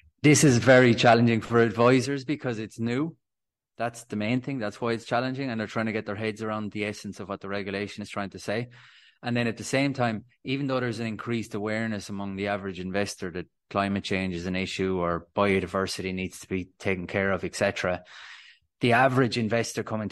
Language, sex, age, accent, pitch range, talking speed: English, male, 20-39, Irish, 100-125 Hz, 210 wpm